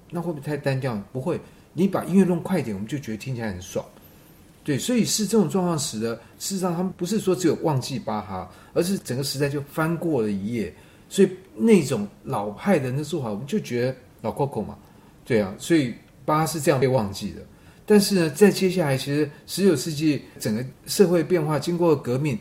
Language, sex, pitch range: Chinese, male, 120-170 Hz